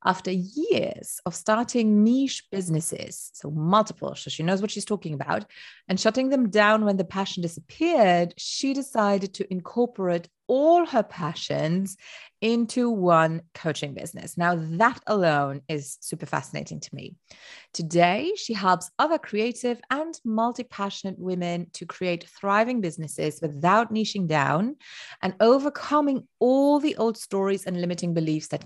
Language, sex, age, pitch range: English, female, 30-49, 170-235 Hz